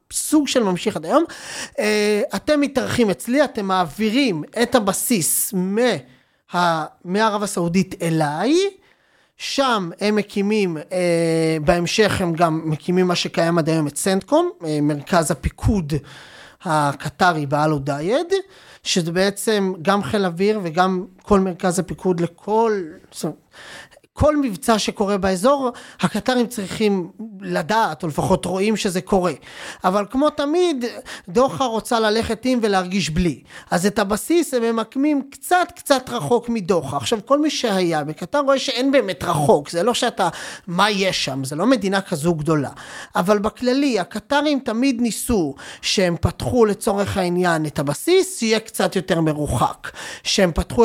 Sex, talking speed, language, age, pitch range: male, 130 wpm, Hebrew, 30-49, 175-245 Hz